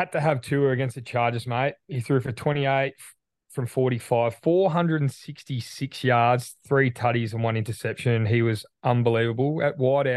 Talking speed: 155 wpm